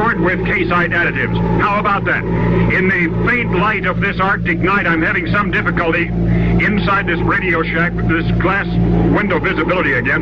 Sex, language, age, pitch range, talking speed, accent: male, English, 60-79, 160-185 Hz, 160 wpm, American